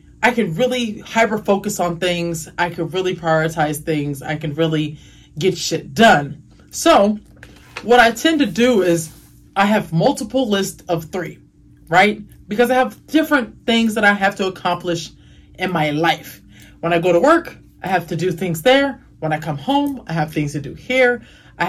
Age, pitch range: 30-49, 165-235 Hz